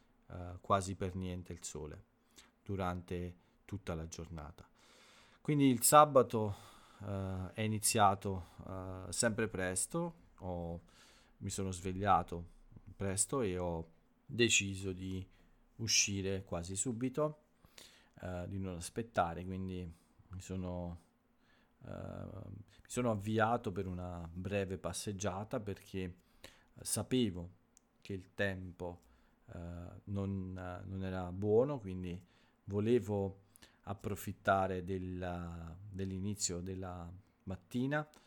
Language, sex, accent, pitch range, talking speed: Italian, male, native, 90-105 Hz, 85 wpm